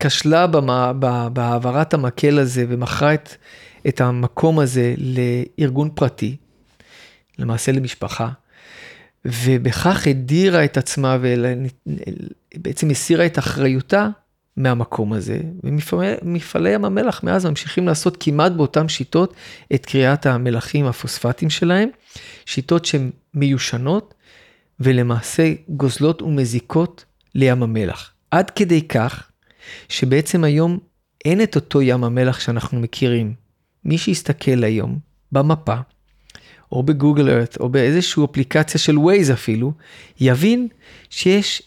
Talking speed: 110 wpm